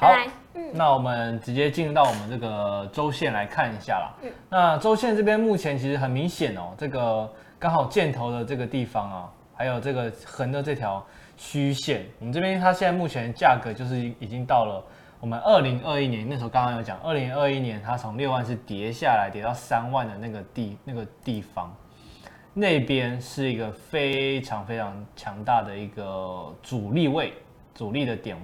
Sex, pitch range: male, 110-140 Hz